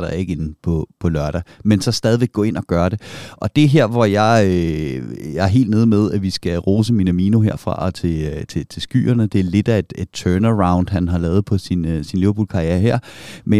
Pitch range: 95-115 Hz